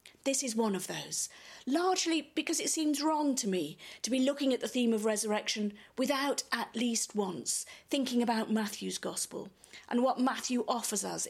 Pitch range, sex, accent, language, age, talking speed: 205-265 Hz, female, British, English, 40-59, 175 wpm